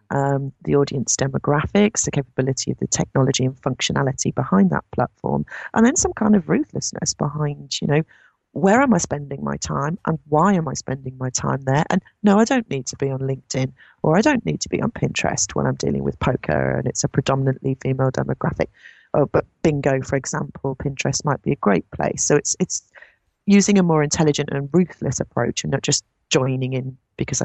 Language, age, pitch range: English, 40-59, 130-165 Hz